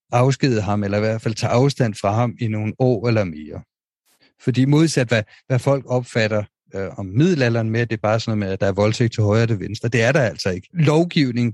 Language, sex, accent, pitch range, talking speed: Danish, male, native, 105-125 Hz, 240 wpm